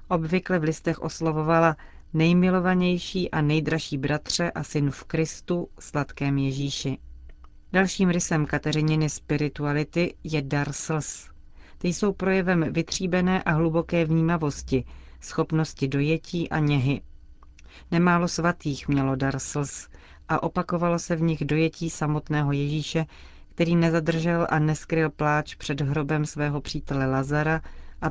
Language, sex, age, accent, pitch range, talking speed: Czech, female, 40-59, native, 140-165 Hz, 115 wpm